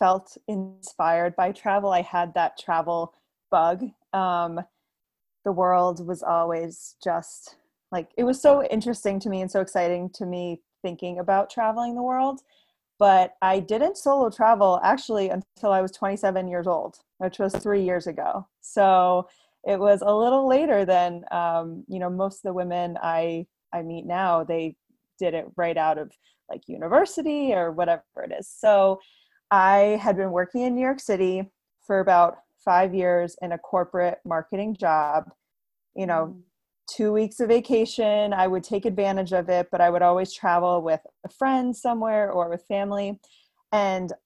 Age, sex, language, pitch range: 20-39, female, English, 175-215 Hz